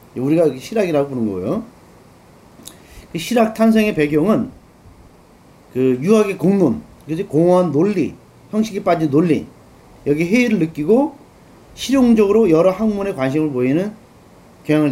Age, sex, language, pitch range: 40-59, male, Korean, 135-210 Hz